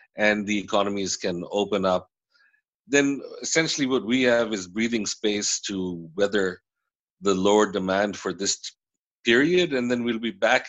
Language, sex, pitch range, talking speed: English, male, 90-110 Hz, 155 wpm